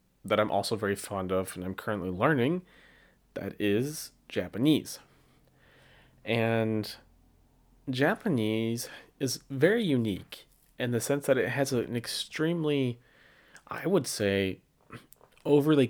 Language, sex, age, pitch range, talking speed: English, male, 30-49, 105-135 Hz, 115 wpm